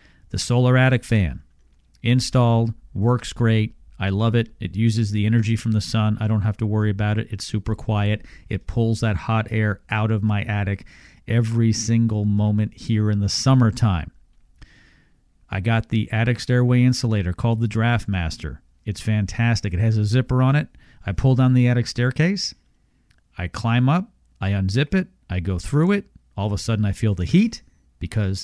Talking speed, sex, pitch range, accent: 180 wpm, male, 100-120 Hz, American